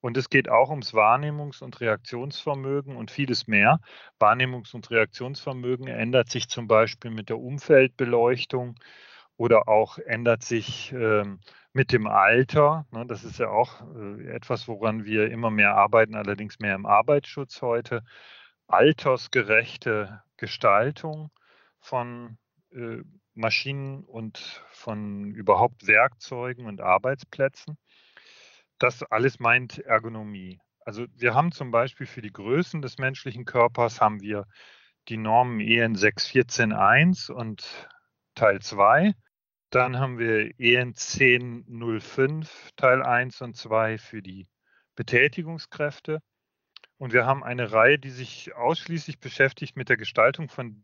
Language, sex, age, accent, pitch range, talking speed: German, male, 40-59, German, 110-135 Hz, 125 wpm